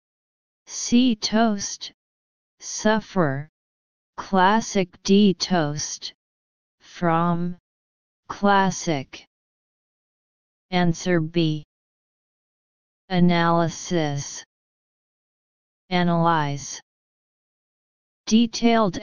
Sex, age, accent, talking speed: female, 30-49, American, 40 wpm